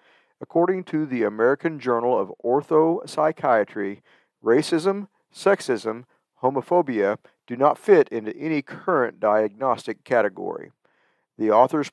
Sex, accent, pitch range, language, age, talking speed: male, American, 115-165 Hz, English, 50-69, 100 wpm